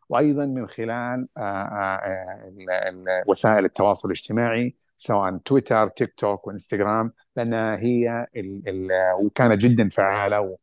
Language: Arabic